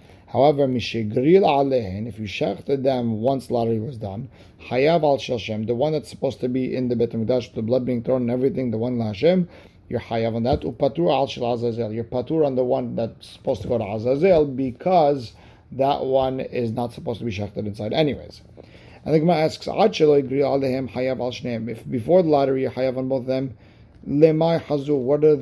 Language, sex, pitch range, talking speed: English, male, 115-145 Hz, 160 wpm